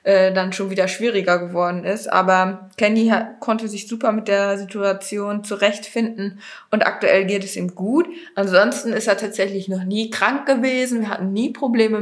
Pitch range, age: 190-225 Hz, 20-39